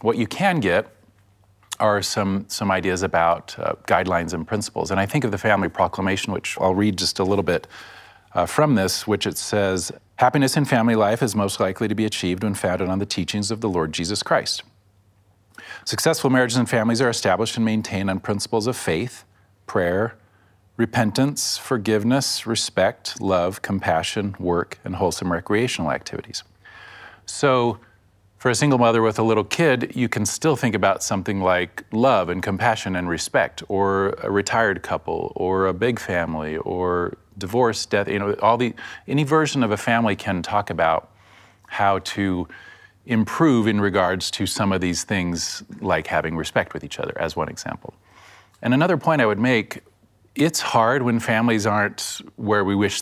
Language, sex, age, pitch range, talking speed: English, male, 40-59, 95-115 Hz, 175 wpm